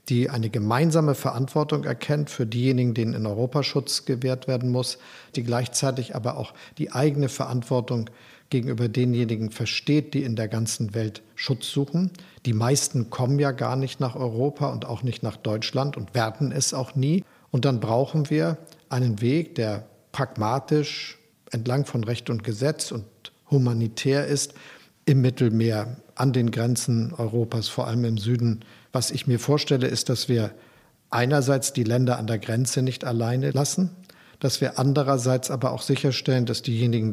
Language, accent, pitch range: German, German, 115-140 Hz